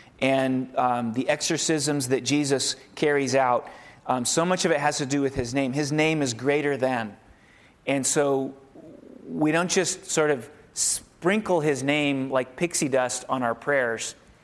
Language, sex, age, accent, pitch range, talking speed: English, male, 30-49, American, 130-150 Hz, 165 wpm